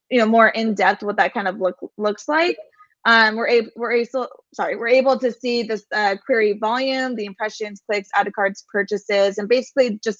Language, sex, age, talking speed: English, female, 20-39, 210 wpm